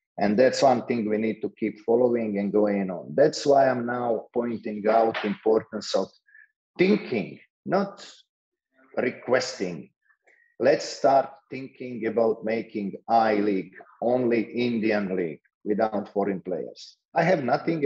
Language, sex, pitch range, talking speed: English, male, 110-140 Hz, 130 wpm